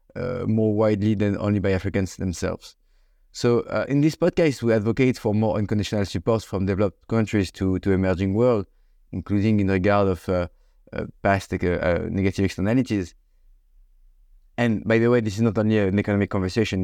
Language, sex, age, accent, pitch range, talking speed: French, male, 30-49, French, 100-125 Hz, 170 wpm